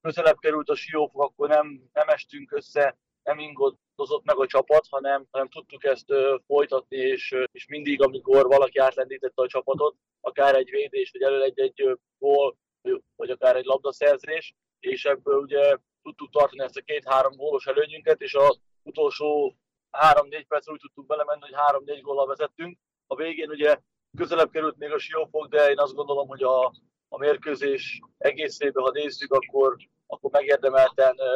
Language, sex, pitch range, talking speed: Hungarian, male, 135-195 Hz, 165 wpm